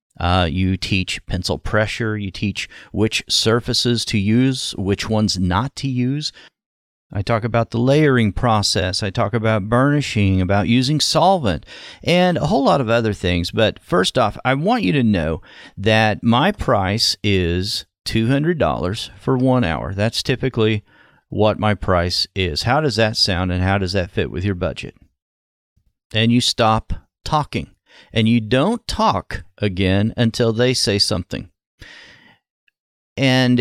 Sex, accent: male, American